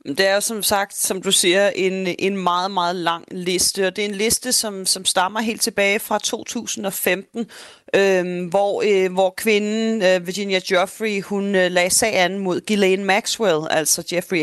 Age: 30-49